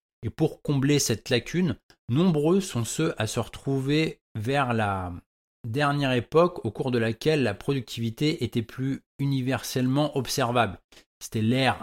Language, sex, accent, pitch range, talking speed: French, male, French, 115-150 Hz, 135 wpm